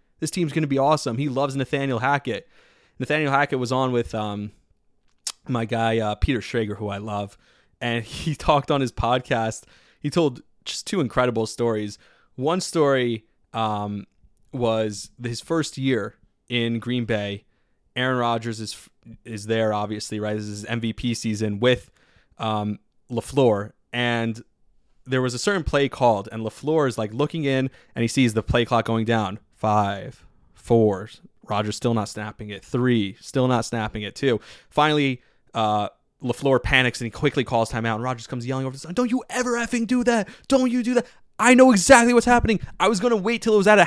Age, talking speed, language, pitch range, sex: 20-39, 185 wpm, English, 115-160 Hz, male